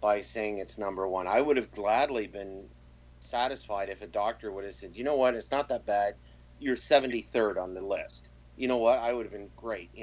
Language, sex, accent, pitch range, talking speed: English, male, American, 90-120 Hz, 225 wpm